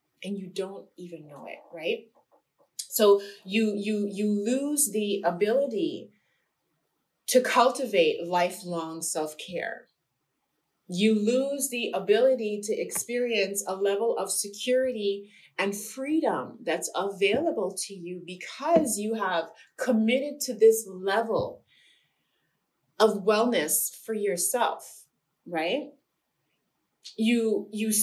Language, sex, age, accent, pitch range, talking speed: English, female, 30-49, American, 185-255 Hz, 105 wpm